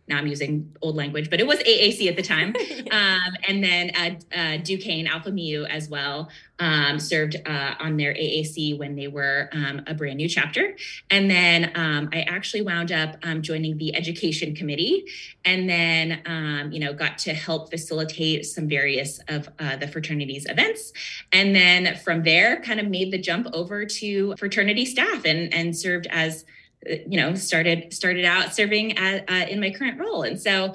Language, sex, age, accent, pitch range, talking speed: English, female, 20-39, American, 155-190 Hz, 185 wpm